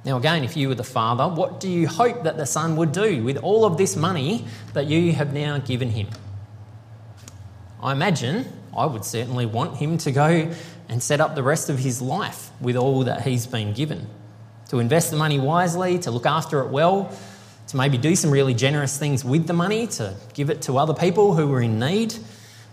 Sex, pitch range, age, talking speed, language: male, 115-160 Hz, 20-39, 210 wpm, English